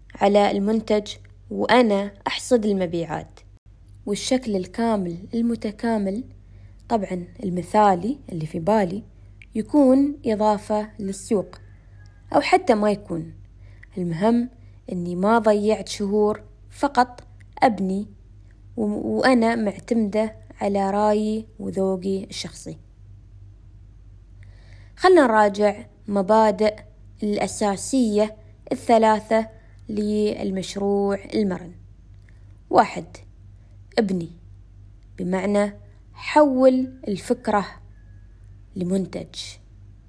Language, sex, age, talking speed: Arabic, female, 20-39, 70 wpm